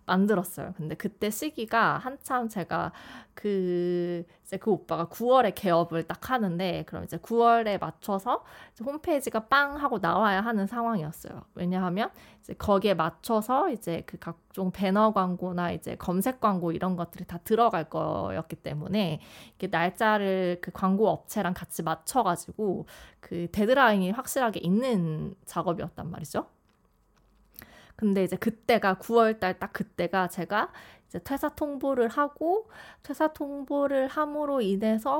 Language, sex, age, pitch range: Korean, female, 20-39, 180-240 Hz